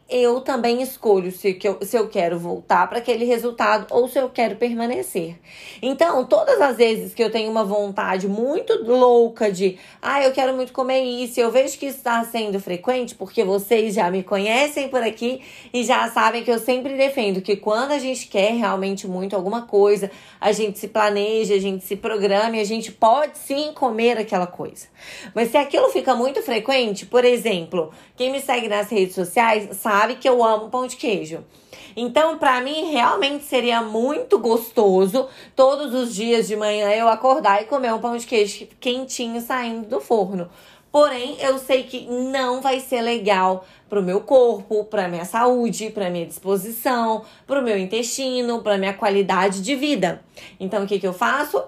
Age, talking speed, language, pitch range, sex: 20-39, 180 wpm, Portuguese, 205-255 Hz, female